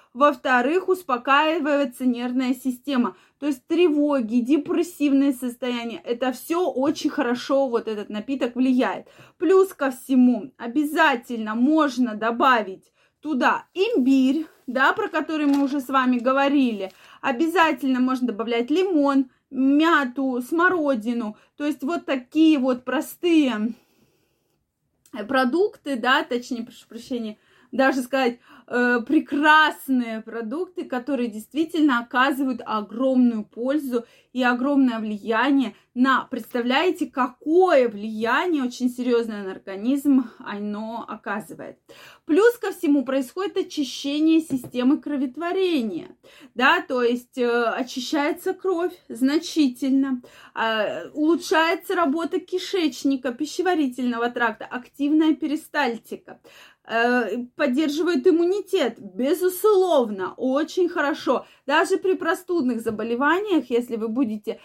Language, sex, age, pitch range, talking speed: Russian, female, 20-39, 245-315 Hz, 95 wpm